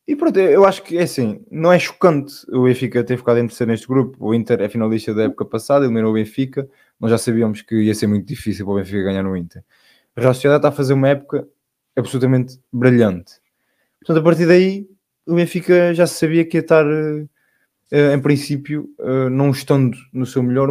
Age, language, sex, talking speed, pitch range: 20-39, Portuguese, male, 205 wpm, 110-145 Hz